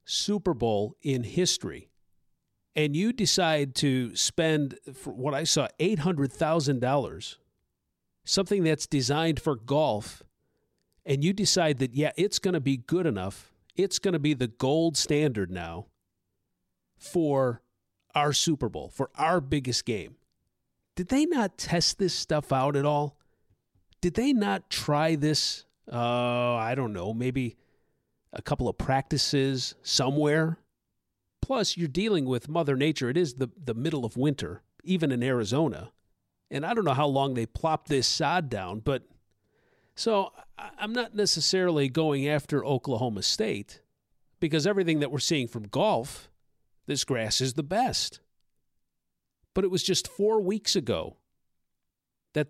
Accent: American